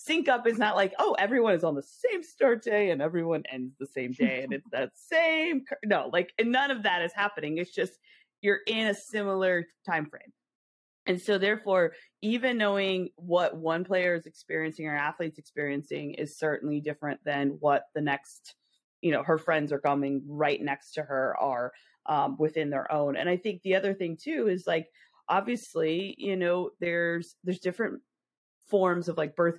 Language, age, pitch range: English, 30-49, 150-195 Hz